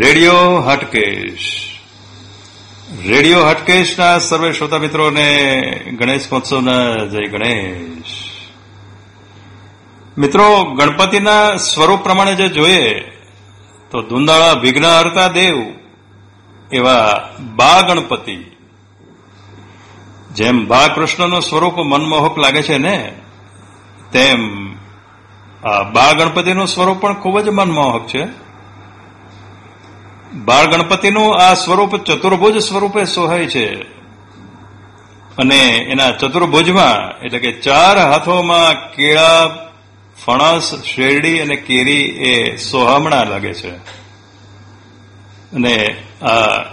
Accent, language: native, Gujarati